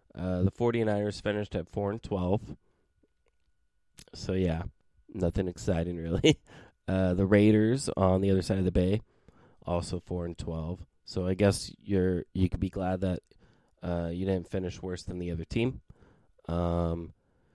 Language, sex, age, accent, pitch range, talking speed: English, male, 20-39, American, 90-115 Hz, 155 wpm